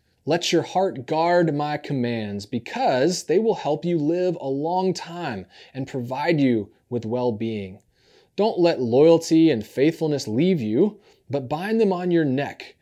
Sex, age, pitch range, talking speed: male, 30-49, 120-175 Hz, 155 wpm